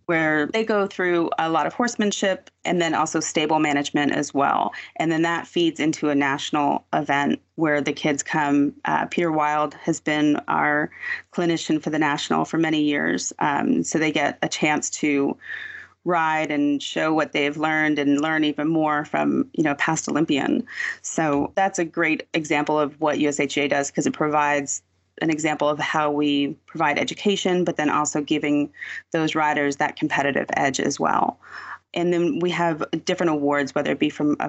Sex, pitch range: female, 150-175 Hz